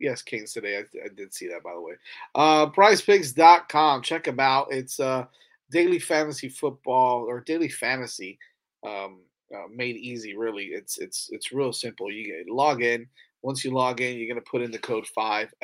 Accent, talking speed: American, 185 wpm